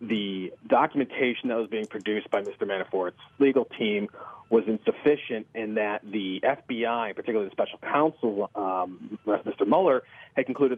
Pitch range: 110-145 Hz